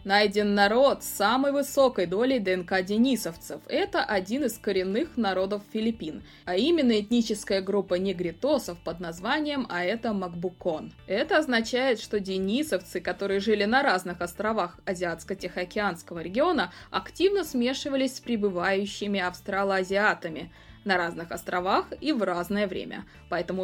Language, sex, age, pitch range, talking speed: Russian, female, 20-39, 180-245 Hz, 120 wpm